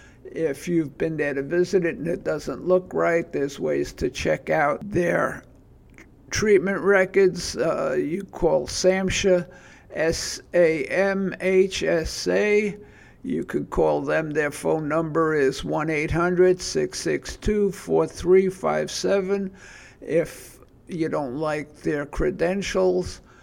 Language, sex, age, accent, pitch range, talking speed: English, male, 60-79, American, 155-190 Hz, 100 wpm